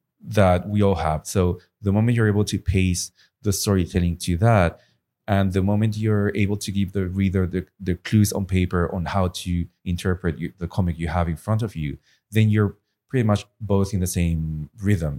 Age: 30-49